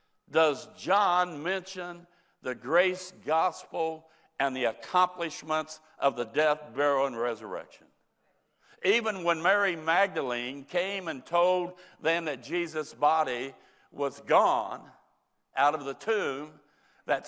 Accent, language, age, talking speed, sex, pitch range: American, English, 60-79, 115 wpm, male, 150-180 Hz